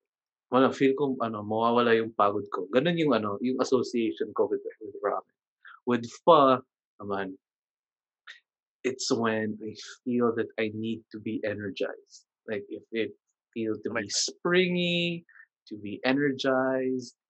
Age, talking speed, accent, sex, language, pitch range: 20-39, 135 wpm, Filipino, male, English, 110-145 Hz